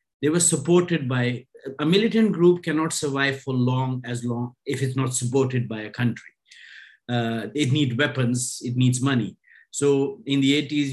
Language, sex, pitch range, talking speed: English, male, 125-155 Hz, 170 wpm